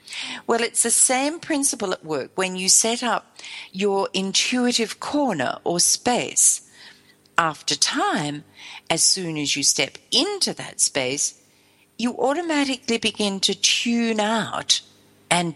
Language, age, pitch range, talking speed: English, 50-69, 155-235 Hz, 125 wpm